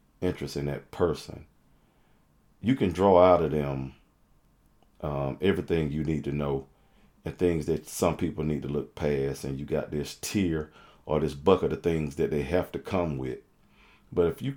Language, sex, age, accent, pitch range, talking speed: English, male, 40-59, American, 70-85 Hz, 180 wpm